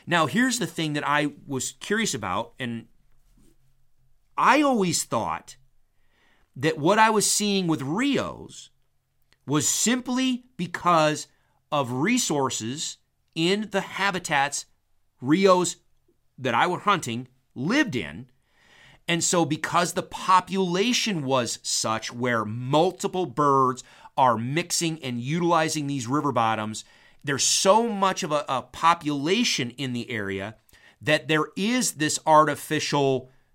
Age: 40-59